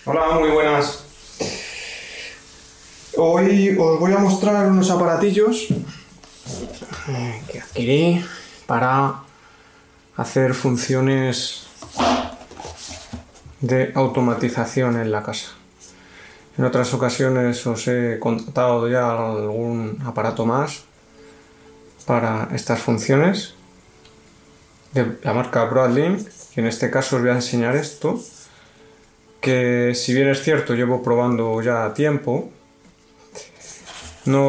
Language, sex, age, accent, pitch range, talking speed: Spanish, male, 20-39, Spanish, 115-135 Hz, 95 wpm